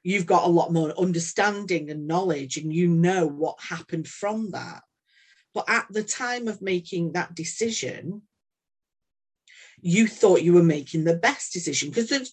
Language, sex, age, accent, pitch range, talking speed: English, female, 40-59, British, 155-185 Hz, 160 wpm